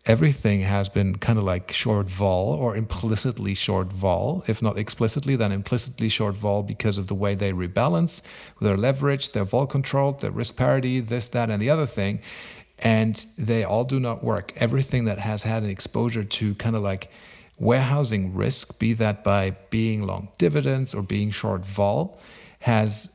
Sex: male